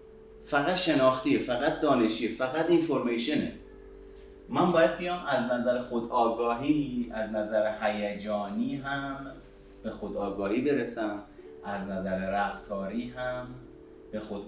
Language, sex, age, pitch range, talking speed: Persian, male, 30-49, 100-145 Hz, 110 wpm